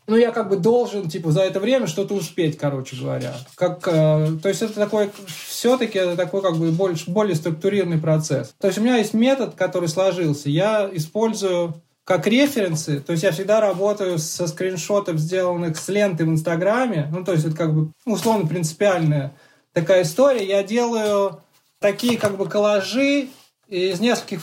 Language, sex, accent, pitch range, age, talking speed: Russian, male, native, 170-215 Hz, 20-39, 165 wpm